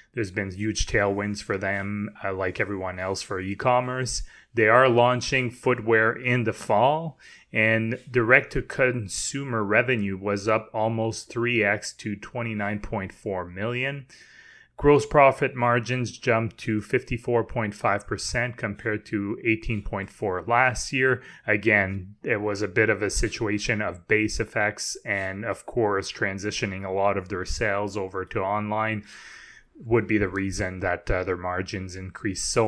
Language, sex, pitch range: English, male, 100-120 Hz